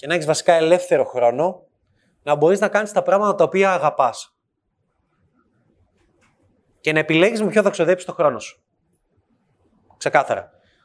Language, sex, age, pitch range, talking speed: Greek, male, 20-39, 145-200 Hz, 145 wpm